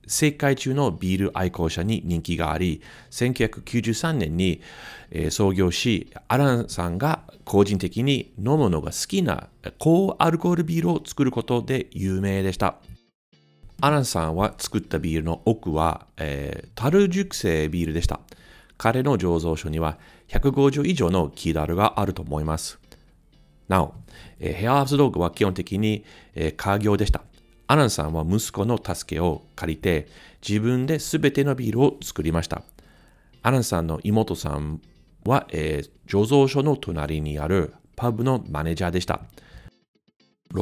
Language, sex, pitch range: Japanese, male, 80-125 Hz